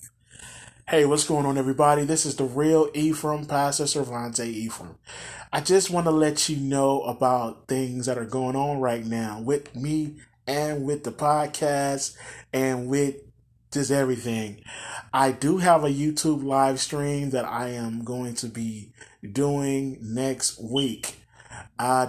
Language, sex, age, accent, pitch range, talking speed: English, male, 30-49, American, 125-150 Hz, 150 wpm